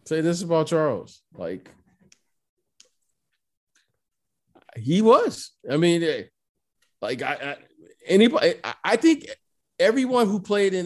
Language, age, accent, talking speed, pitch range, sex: English, 50-69, American, 105 wpm, 145-225 Hz, male